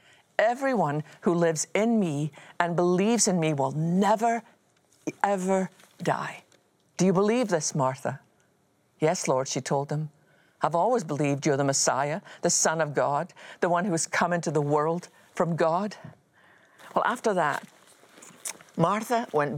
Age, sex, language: 50-69, female, English